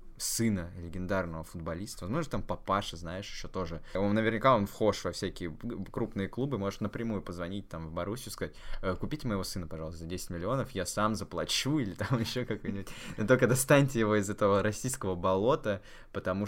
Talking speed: 170 wpm